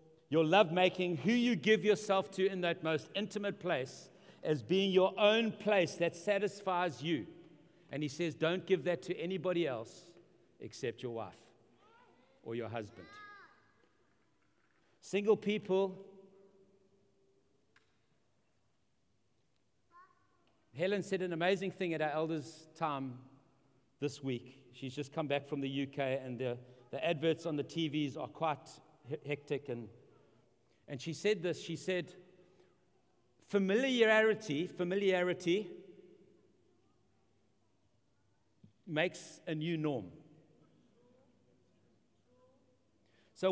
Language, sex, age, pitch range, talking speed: English, male, 60-79, 145-195 Hz, 110 wpm